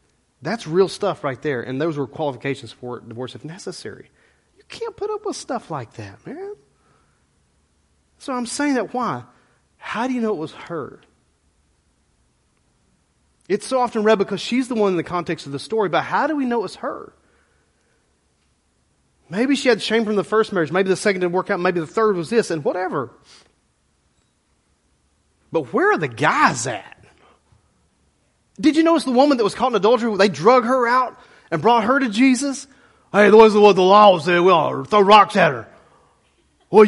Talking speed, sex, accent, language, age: 185 wpm, male, American, English, 30-49